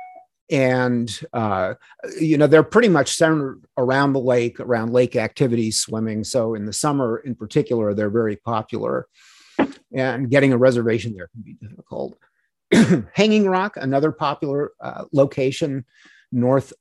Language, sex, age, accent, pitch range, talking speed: English, male, 50-69, American, 110-140 Hz, 140 wpm